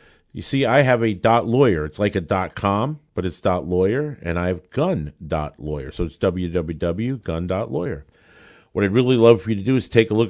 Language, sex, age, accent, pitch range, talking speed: English, male, 50-69, American, 95-120 Hz, 185 wpm